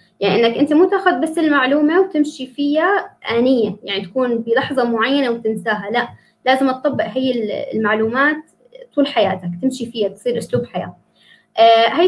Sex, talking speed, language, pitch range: female, 140 wpm, Arabic, 225-285 Hz